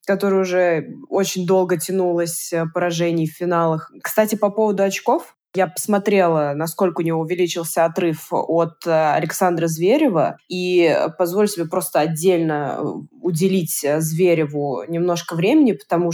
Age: 20-39